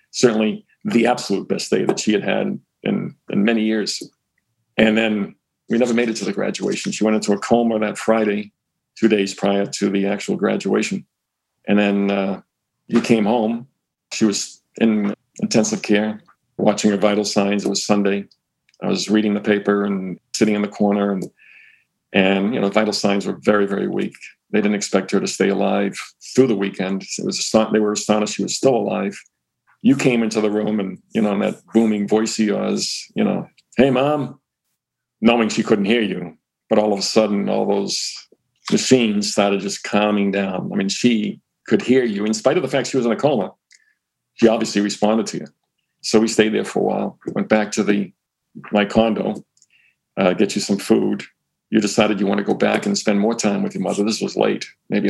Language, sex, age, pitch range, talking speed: English, male, 40-59, 100-110 Hz, 205 wpm